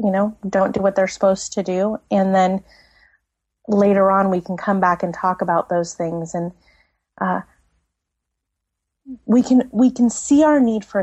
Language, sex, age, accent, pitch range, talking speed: English, female, 30-49, American, 175-225 Hz, 175 wpm